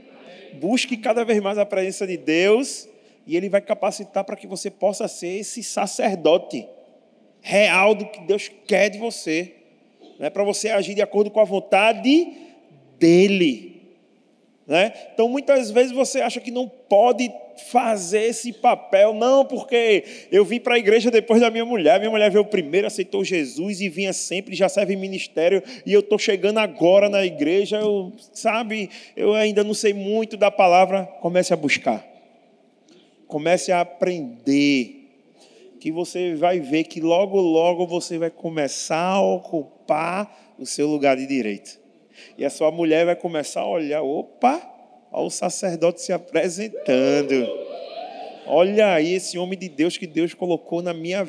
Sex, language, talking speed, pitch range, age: male, Portuguese, 155 wpm, 180-230 Hz, 20-39